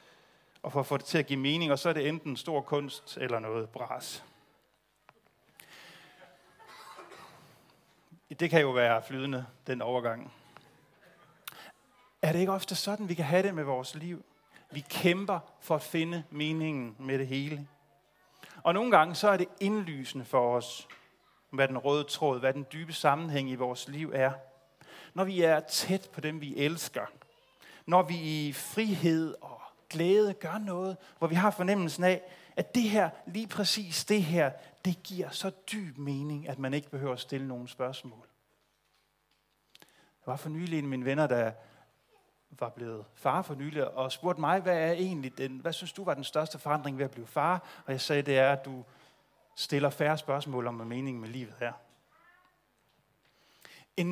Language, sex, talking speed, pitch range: Danish, male, 175 wpm, 135-175 Hz